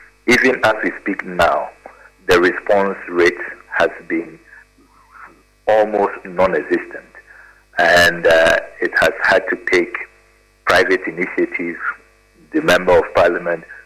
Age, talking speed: 50-69, 110 wpm